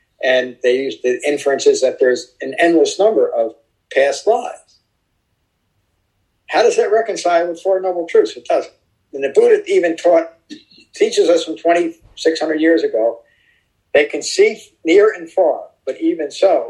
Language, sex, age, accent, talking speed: English, male, 50-69, American, 160 wpm